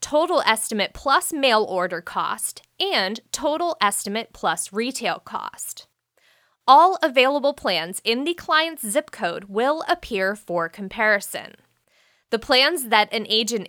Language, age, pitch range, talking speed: English, 20-39, 200-290 Hz, 125 wpm